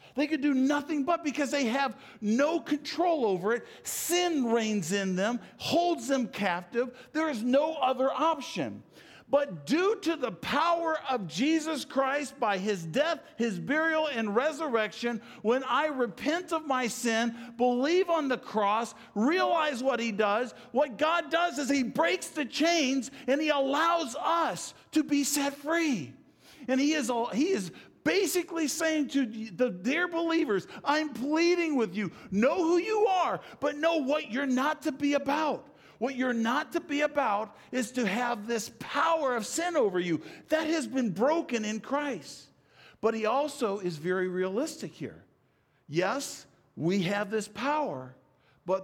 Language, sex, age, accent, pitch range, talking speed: English, male, 50-69, American, 210-300 Hz, 160 wpm